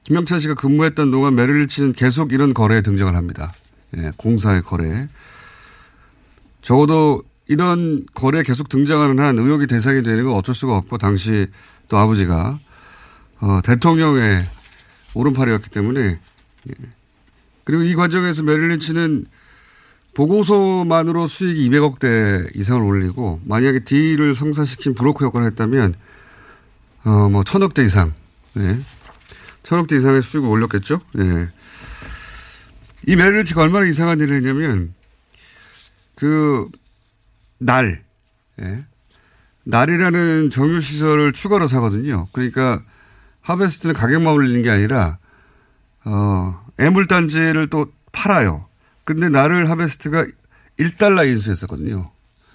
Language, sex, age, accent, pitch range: Korean, male, 40-59, native, 105-155 Hz